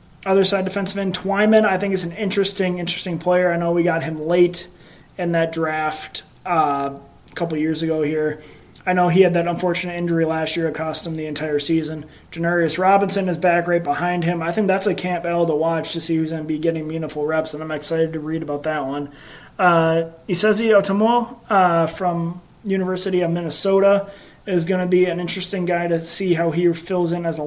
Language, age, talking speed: English, 20-39, 210 wpm